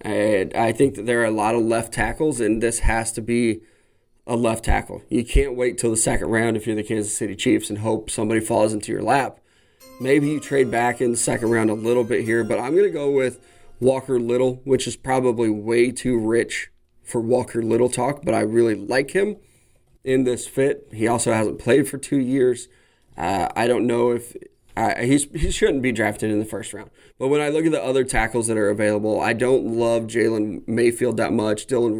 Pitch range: 115-130 Hz